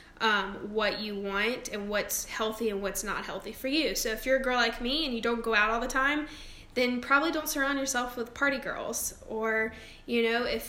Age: 10-29